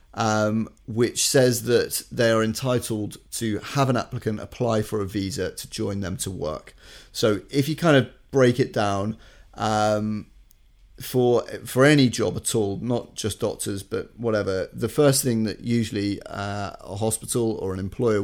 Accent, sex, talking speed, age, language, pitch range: British, male, 170 wpm, 30-49, English, 100-120 Hz